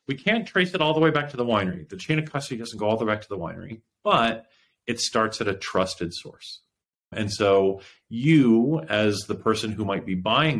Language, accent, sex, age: English, American, male, 40-59